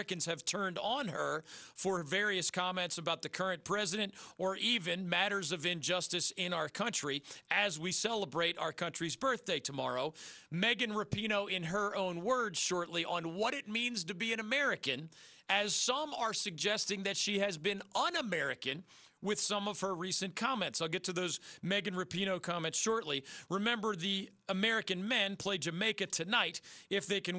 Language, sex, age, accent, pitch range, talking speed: English, male, 40-59, American, 165-205 Hz, 165 wpm